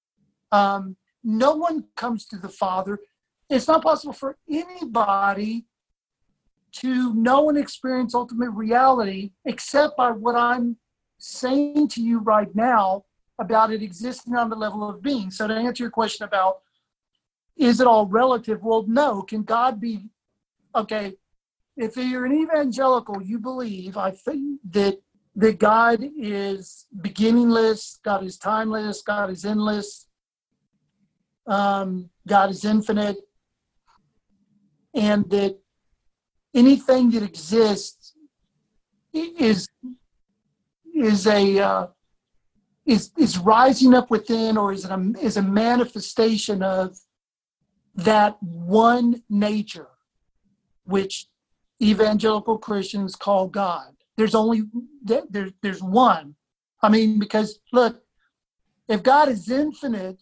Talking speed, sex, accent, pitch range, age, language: 115 wpm, male, American, 200-245 Hz, 50-69, English